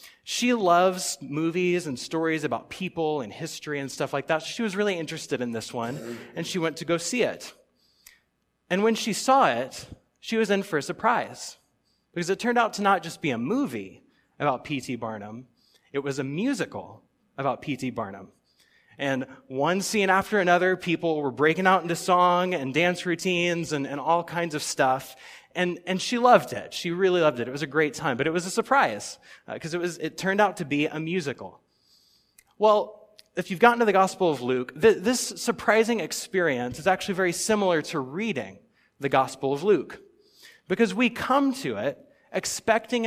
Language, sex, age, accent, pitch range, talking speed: English, male, 30-49, American, 145-210 Hz, 190 wpm